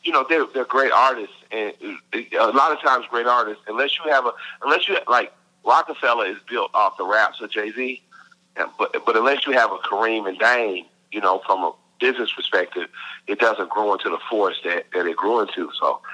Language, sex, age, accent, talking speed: English, male, 40-59, American, 210 wpm